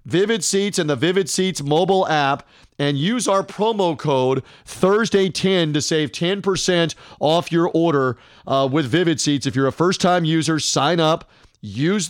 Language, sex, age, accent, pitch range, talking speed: English, male, 40-59, American, 145-180 Hz, 160 wpm